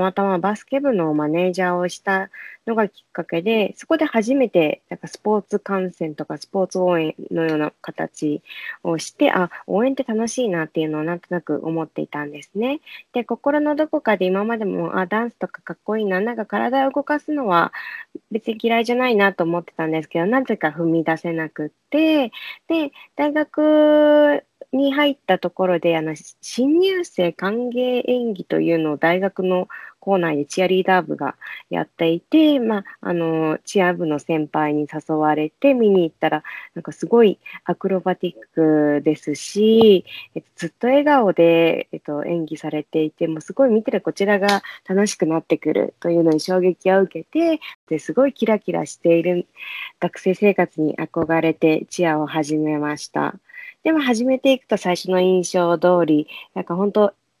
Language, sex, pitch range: English, female, 165-235 Hz